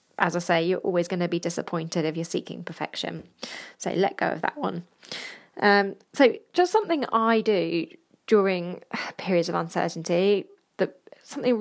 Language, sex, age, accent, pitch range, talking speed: English, female, 20-39, British, 175-230 Hz, 160 wpm